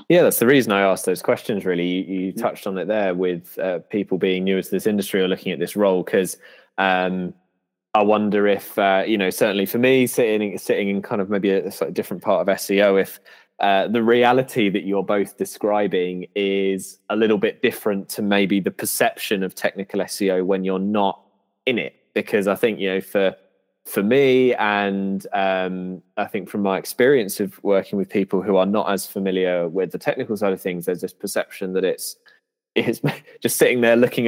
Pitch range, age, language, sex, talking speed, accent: 95-105 Hz, 20-39, English, male, 205 wpm, British